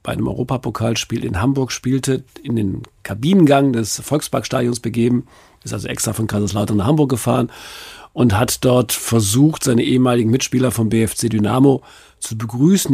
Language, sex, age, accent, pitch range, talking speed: German, male, 50-69, German, 115-135 Hz, 150 wpm